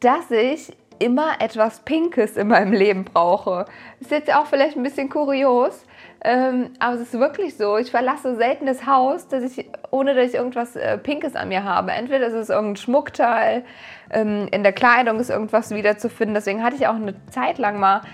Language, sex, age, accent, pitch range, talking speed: German, female, 20-39, German, 200-260 Hz, 190 wpm